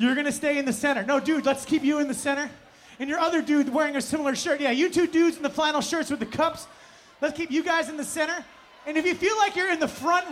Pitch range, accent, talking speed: 265-335 Hz, American, 285 wpm